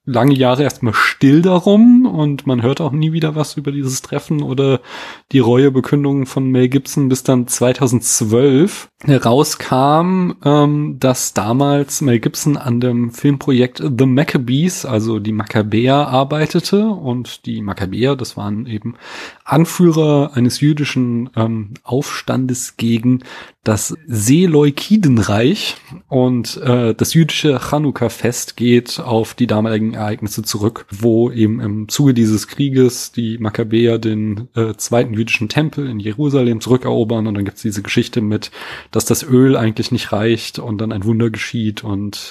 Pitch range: 115-145 Hz